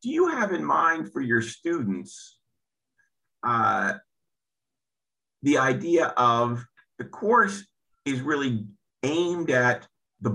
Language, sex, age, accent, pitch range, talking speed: English, male, 50-69, American, 110-150 Hz, 110 wpm